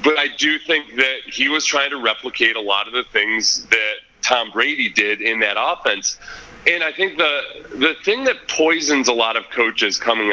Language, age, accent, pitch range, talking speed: English, 30-49, American, 115-155 Hz, 205 wpm